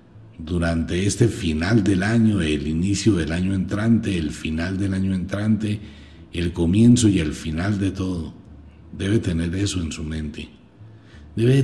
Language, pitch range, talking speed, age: Spanish, 85-115 Hz, 150 wpm, 60-79